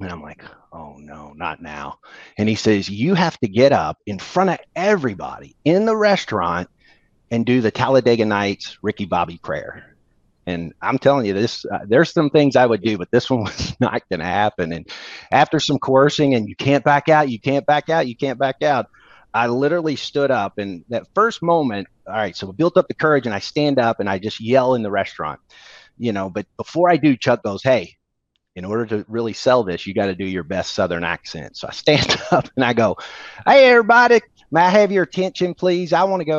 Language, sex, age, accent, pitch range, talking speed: English, male, 30-49, American, 100-150 Hz, 225 wpm